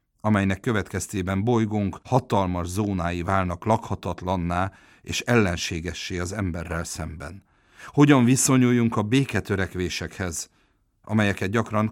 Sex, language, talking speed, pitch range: male, Hungarian, 90 wpm, 85-110 Hz